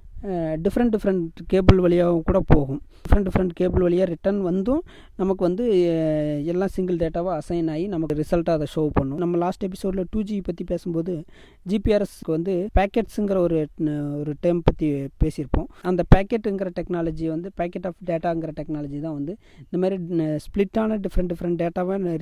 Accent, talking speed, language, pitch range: native, 145 wpm, Tamil, 155-185 Hz